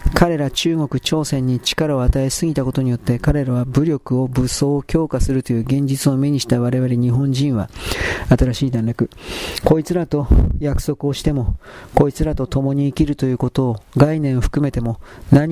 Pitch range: 125-145 Hz